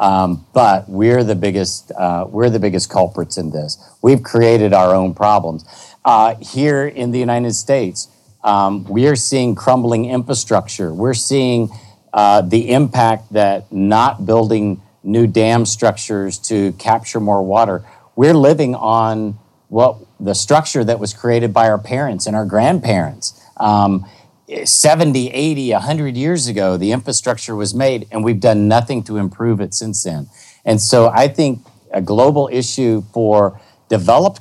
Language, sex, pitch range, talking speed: English, male, 100-120 Hz, 150 wpm